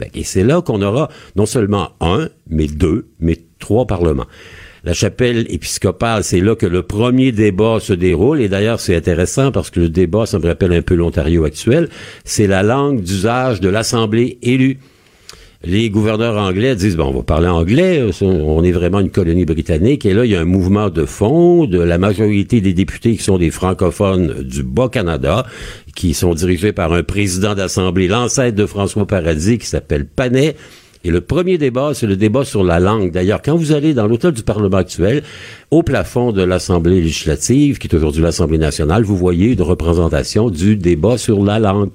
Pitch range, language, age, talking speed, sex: 85-115 Hz, French, 60-79, 190 wpm, male